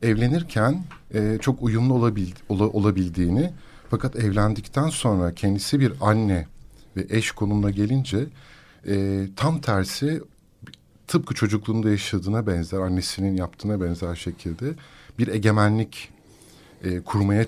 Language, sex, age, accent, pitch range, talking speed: Turkish, male, 50-69, native, 100-130 Hz, 95 wpm